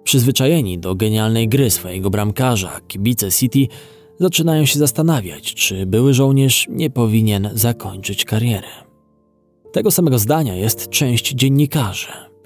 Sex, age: male, 20-39